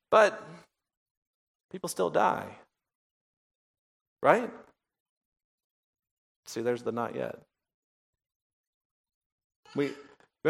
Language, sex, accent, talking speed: English, male, American, 70 wpm